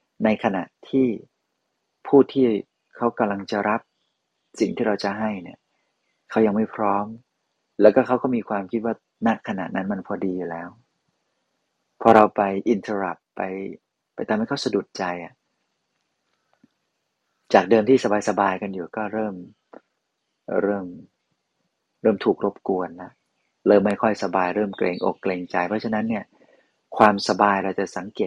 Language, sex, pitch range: Thai, male, 95-115 Hz